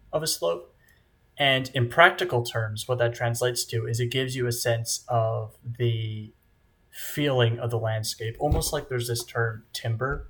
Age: 30-49